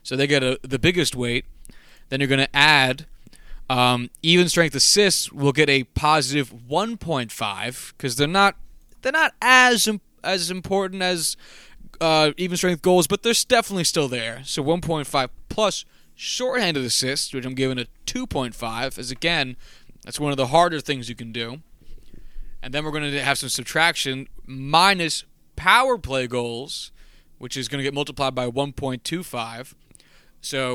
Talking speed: 150 wpm